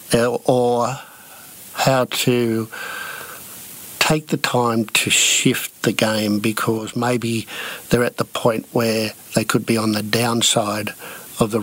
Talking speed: 130 wpm